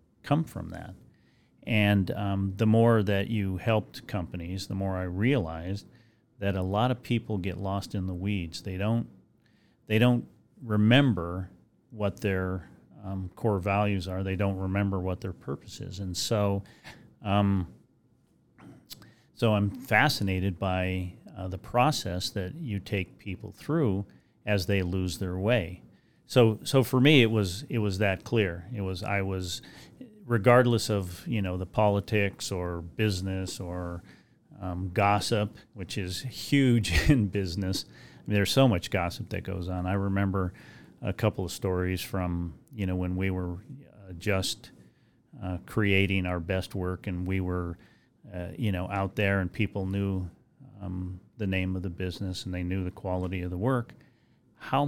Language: English